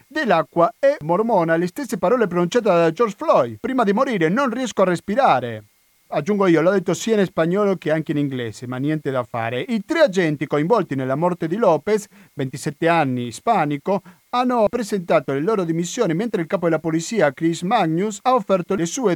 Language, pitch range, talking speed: Italian, 150-200 Hz, 185 wpm